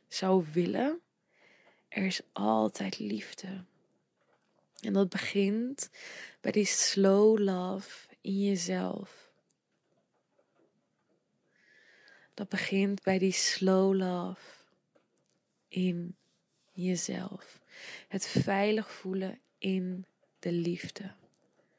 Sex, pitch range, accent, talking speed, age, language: female, 185-205 Hz, Dutch, 80 wpm, 20-39, Dutch